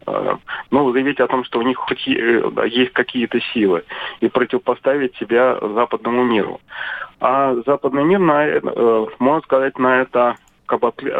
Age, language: 30-49, Russian